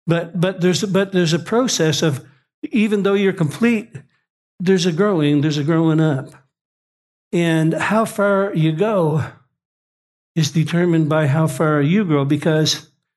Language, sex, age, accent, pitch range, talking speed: English, male, 60-79, American, 150-185 Hz, 145 wpm